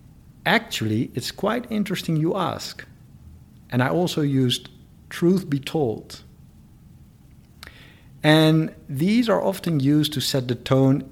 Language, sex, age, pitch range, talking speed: English, male, 50-69, 110-150 Hz, 120 wpm